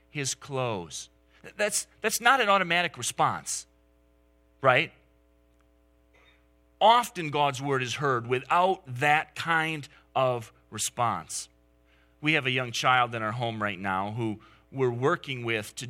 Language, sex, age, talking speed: English, male, 30-49, 130 wpm